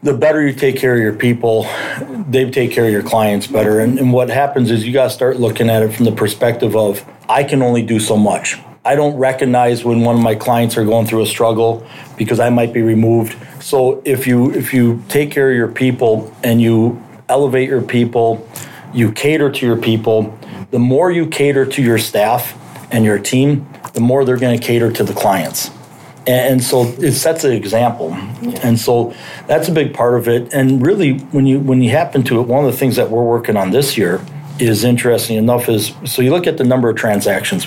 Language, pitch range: English, 115-135 Hz